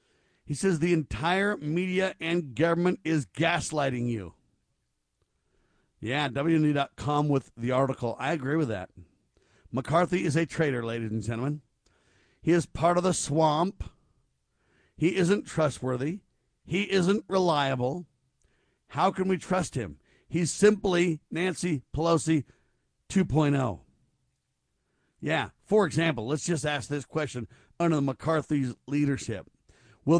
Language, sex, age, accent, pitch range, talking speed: English, male, 50-69, American, 130-165 Hz, 115 wpm